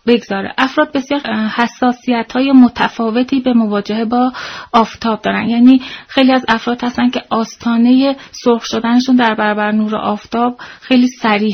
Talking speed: 135 wpm